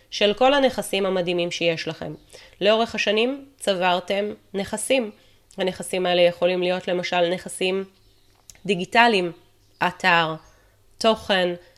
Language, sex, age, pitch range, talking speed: Hebrew, female, 20-39, 175-220 Hz, 95 wpm